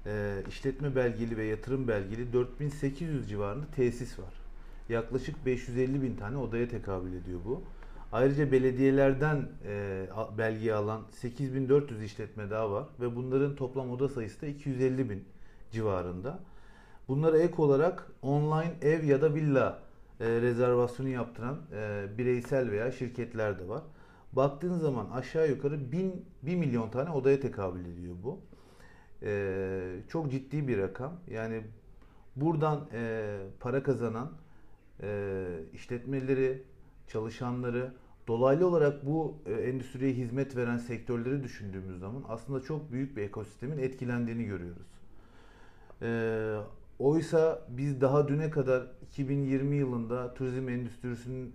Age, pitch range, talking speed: 40-59, 110-135 Hz, 120 wpm